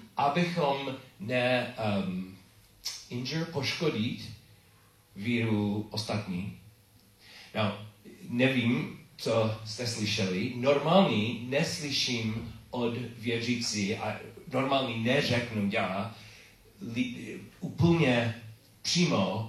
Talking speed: 70 wpm